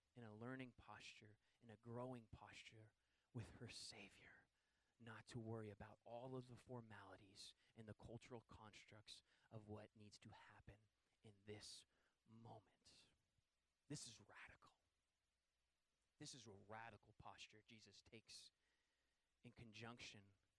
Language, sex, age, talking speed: English, male, 30-49, 125 wpm